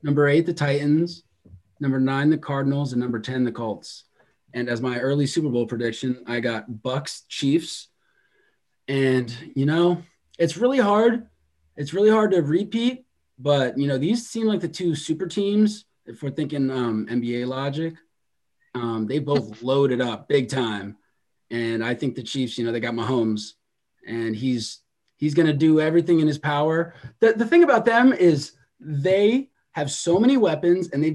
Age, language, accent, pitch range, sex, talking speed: 30-49, English, American, 130-185 Hz, male, 175 wpm